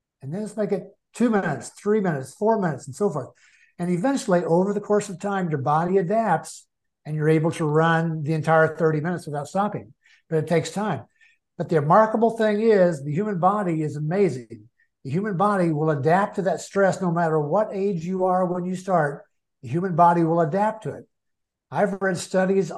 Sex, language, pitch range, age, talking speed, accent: male, English, 155-200 Hz, 60-79, 200 wpm, American